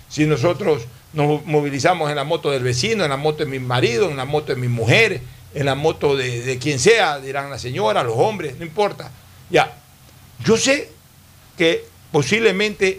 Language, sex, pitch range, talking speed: Spanish, male, 135-195 Hz, 185 wpm